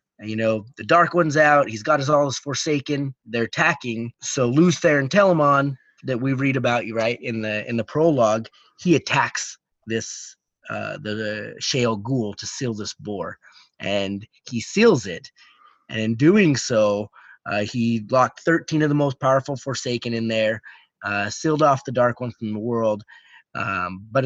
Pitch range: 110-140 Hz